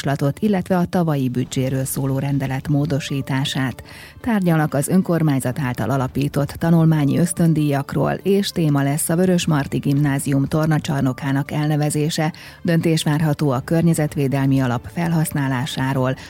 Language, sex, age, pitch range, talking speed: Hungarian, female, 30-49, 130-160 Hz, 105 wpm